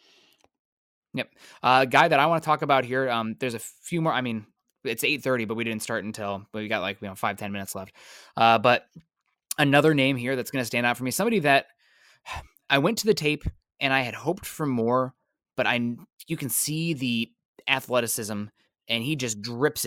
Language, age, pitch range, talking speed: English, 20-39, 115-145 Hz, 215 wpm